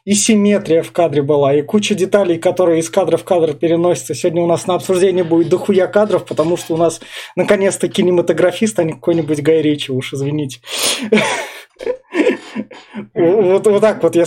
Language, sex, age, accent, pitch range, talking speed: Russian, male, 20-39, native, 160-205 Hz, 165 wpm